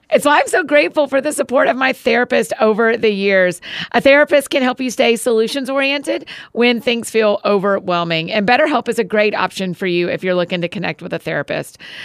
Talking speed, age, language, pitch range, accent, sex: 205 wpm, 40-59, English, 195-260 Hz, American, female